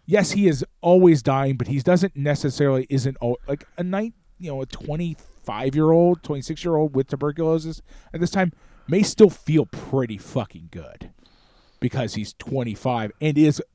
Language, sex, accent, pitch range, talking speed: English, male, American, 110-155 Hz, 155 wpm